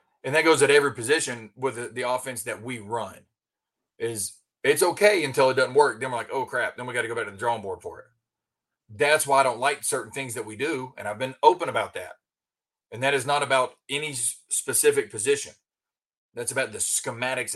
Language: English